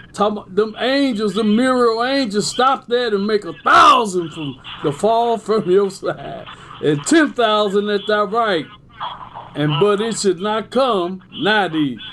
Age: 50-69